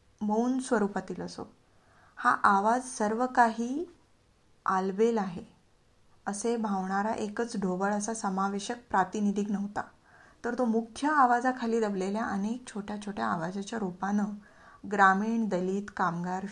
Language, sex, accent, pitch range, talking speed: Marathi, female, native, 195-230 Hz, 115 wpm